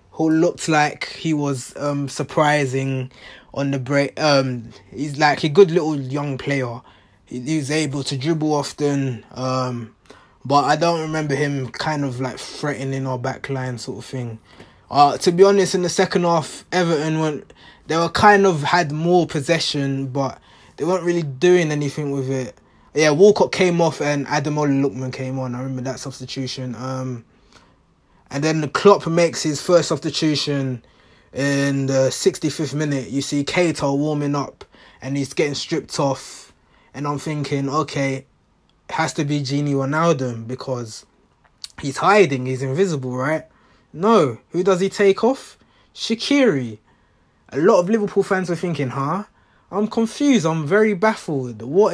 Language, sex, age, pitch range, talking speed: English, male, 20-39, 130-170 Hz, 160 wpm